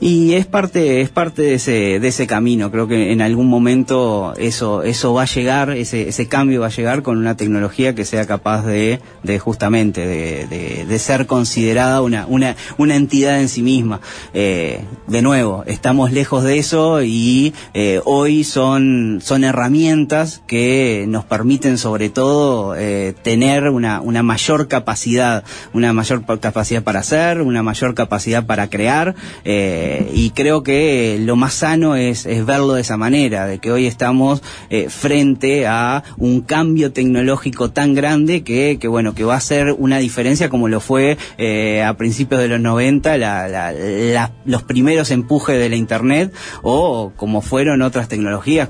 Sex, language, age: male, Spanish, 30-49